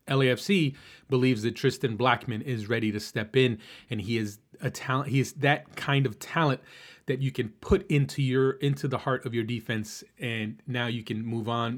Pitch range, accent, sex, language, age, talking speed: 115-135 Hz, American, male, English, 30-49, 200 wpm